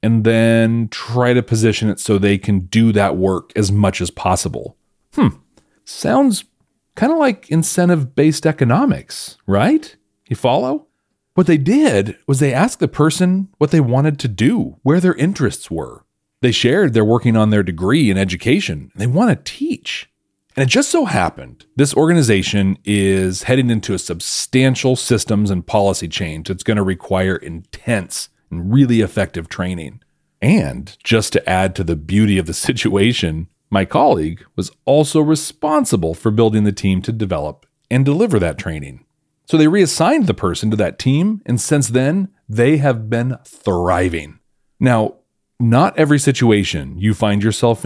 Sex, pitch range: male, 95-140 Hz